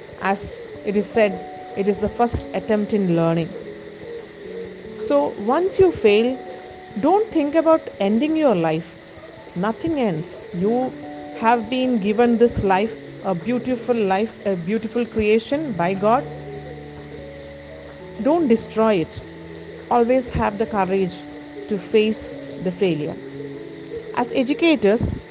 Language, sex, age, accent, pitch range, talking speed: English, female, 40-59, Indian, 190-245 Hz, 120 wpm